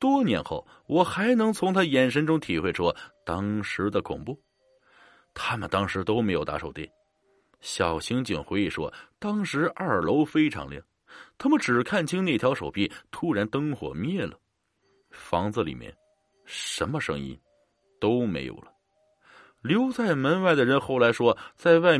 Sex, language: male, Chinese